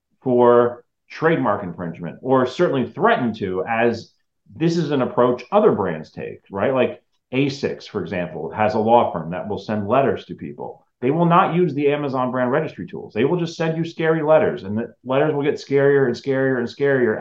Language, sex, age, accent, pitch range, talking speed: English, male, 30-49, American, 110-145 Hz, 195 wpm